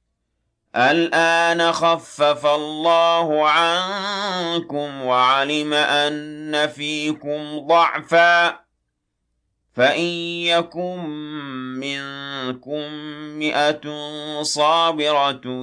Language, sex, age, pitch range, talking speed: Arabic, male, 40-59, 115-155 Hz, 45 wpm